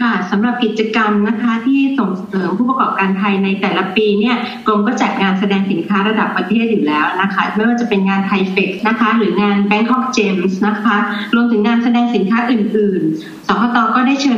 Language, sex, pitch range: Thai, female, 195-225 Hz